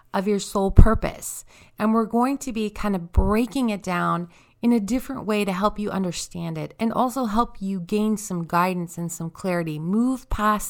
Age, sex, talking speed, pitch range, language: 30-49, female, 195 wpm, 175-215 Hz, English